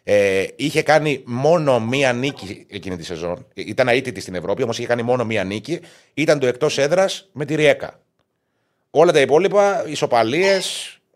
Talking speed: 160 wpm